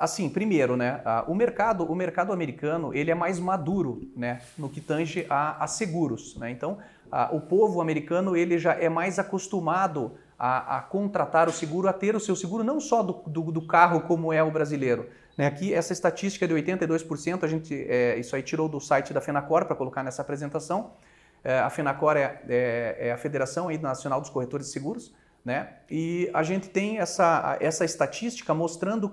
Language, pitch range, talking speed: Portuguese, 155-200 Hz, 170 wpm